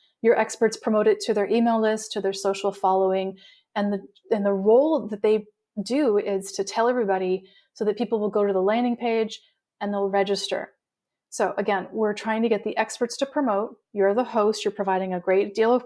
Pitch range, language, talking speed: 195-230 Hz, English, 210 wpm